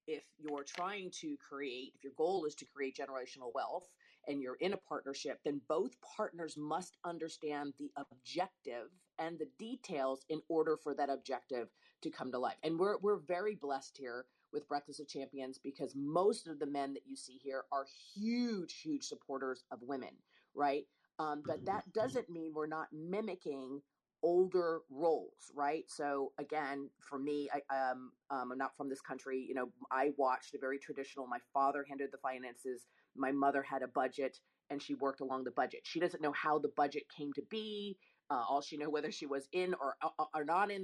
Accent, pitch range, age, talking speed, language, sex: American, 135-165 Hz, 40-59, 190 wpm, English, female